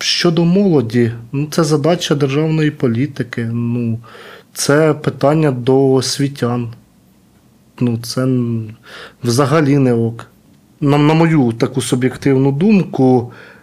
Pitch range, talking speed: 125-155 Hz, 100 wpm